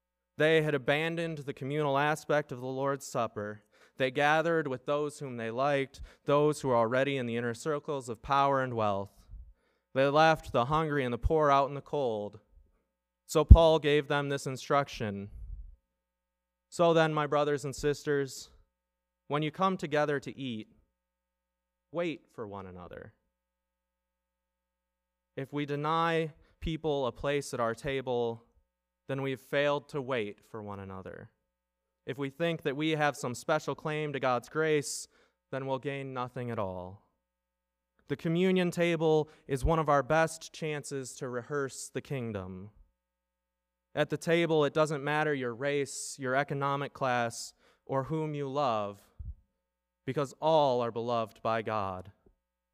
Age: 20-39